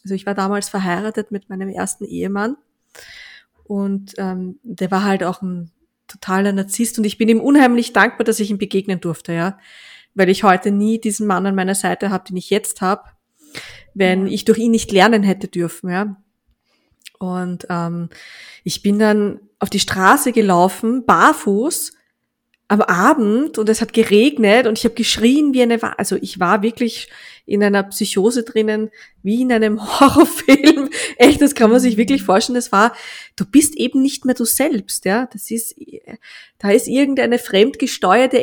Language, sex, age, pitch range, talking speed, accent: German, female, 20-39, 195-240 Hz, 175 wpm, German